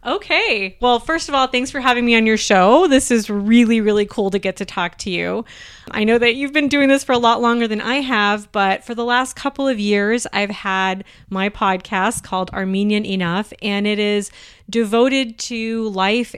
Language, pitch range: English, 190-235 Hz